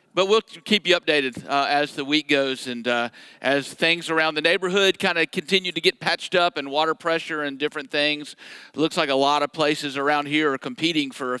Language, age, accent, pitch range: English, 50-69, American, 130-160 Hz